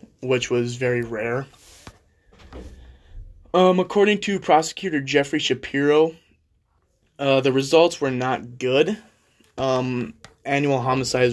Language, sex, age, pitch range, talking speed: English, male, 20-39, 120-140 Hz, 130 wpm